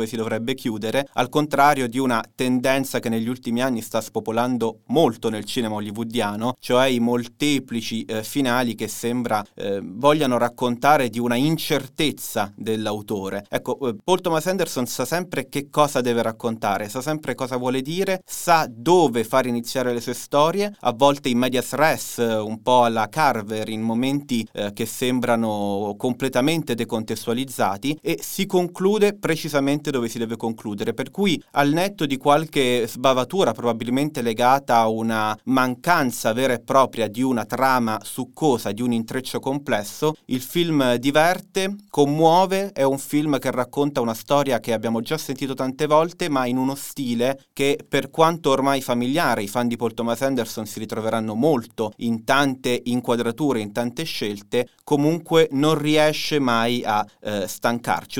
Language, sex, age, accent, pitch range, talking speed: Italian, male, 30-49, native, 115-145 Hz, 155 wpm